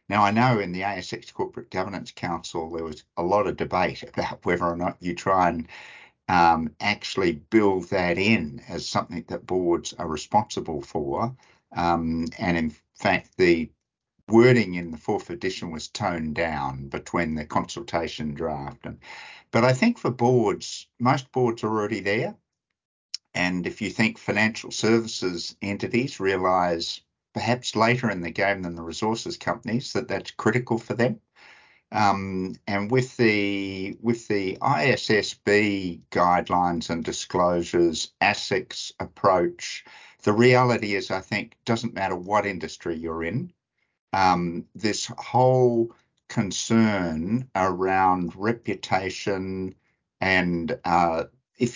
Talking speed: 135 wpm